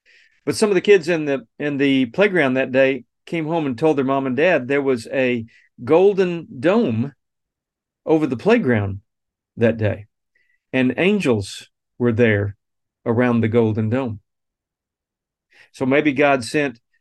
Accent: American